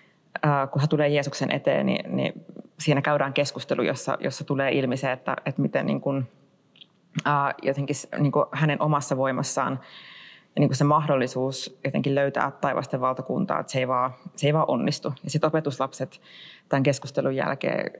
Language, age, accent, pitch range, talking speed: Finnish, 30-49, native, 135-155 Hz, 160 wpm